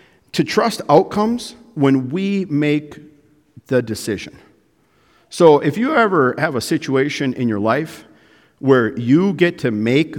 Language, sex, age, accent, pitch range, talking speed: English, male, 50-69, American, 120-180 Hz, 135 wpm